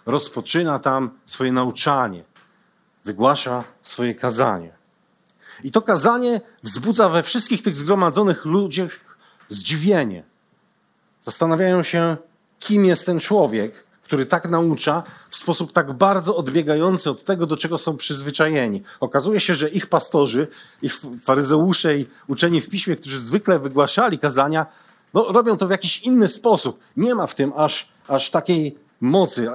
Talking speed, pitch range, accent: 135 wpm, 135-185 Hz, native